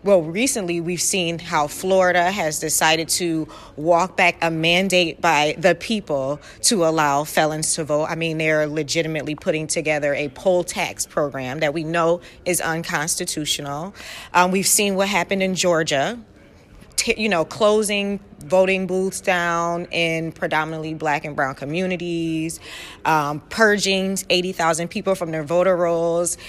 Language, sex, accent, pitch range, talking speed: English, female, American, 155-195 Hz, 145 wpm